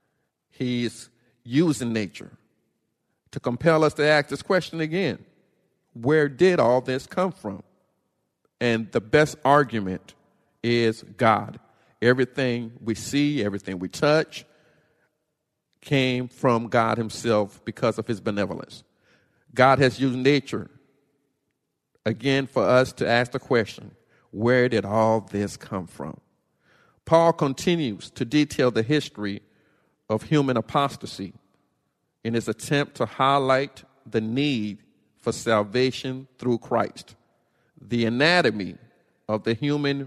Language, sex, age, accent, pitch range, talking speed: English, male, 50-69, American, 115-145 Hz, 120 wpm